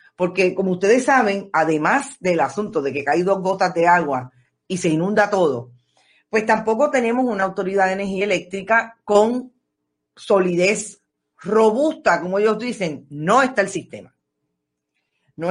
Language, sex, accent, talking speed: Spanish, female, American, 145 wpm